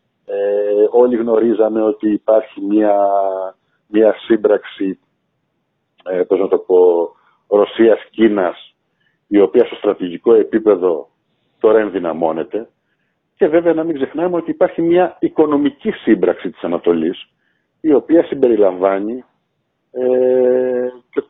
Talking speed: 105 wpm